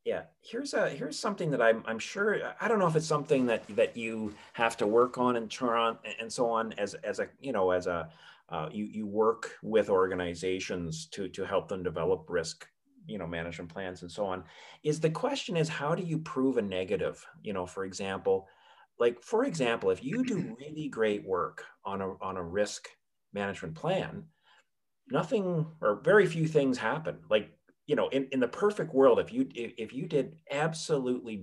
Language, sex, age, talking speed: English, male, 30-49, 195 wpm